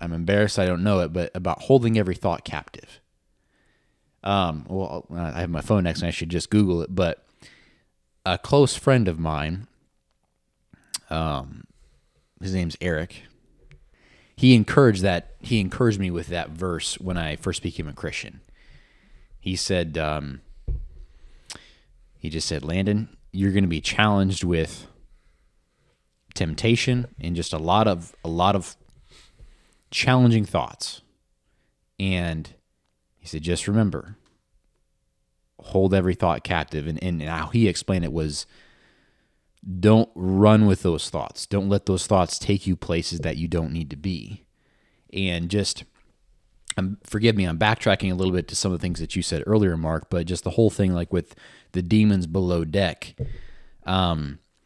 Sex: male